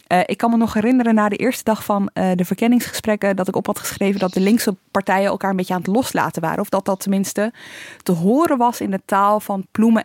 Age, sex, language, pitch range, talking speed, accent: 20-39, female, Dutch, 185-230 Hz, 250 wpm, Dutch